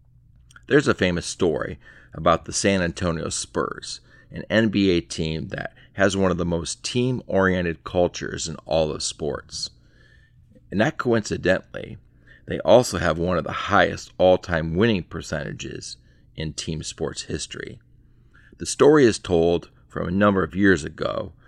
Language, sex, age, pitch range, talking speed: English, male, 40-59, 85-120 Hz, 140 wpm